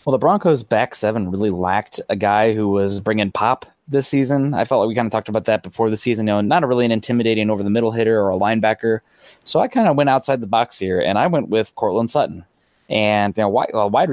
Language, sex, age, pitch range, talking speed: English, male, 20-39, 105-120 Hz, 245 wpm